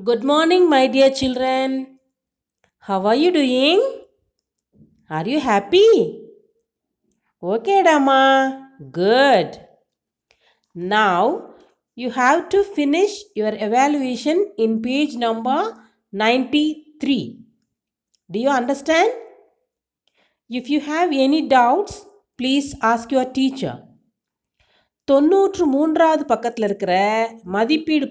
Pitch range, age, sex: 225-315 Hz, 50-69, female